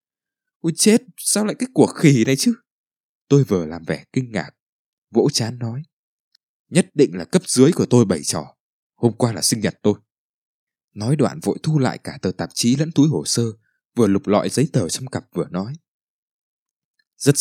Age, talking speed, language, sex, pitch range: 20-39, 195 wpm, Vietnamese, male, 105-140 Hz